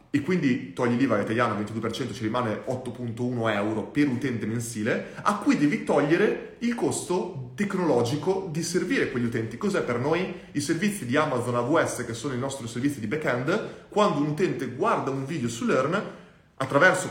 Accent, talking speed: native, 170 wpm